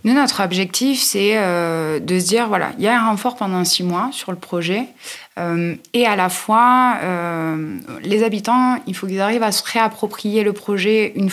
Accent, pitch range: French, 170-210 Hz